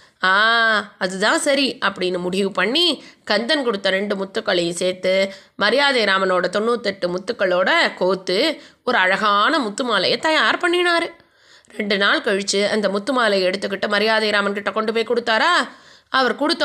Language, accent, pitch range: Tamil, native, 210-330 Hz